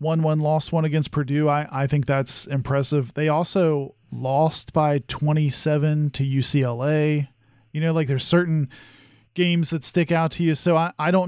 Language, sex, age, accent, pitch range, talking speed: English, male, 40-59, American, 130-155 Hz, 180 wpm